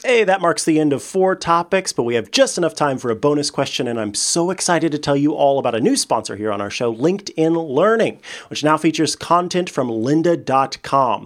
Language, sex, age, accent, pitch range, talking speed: English, male, 30-49, American, 125-185 Hz, 225 wpm